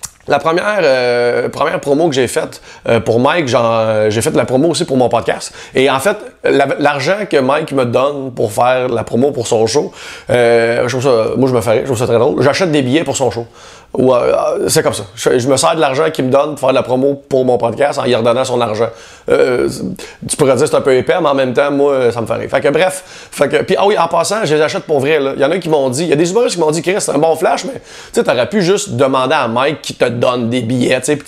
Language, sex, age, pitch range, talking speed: English, male, 30-49, 125-155 Hz, 270 wpm